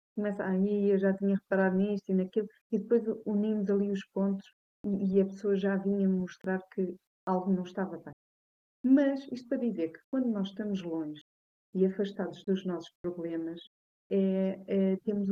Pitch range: 190-220 Hz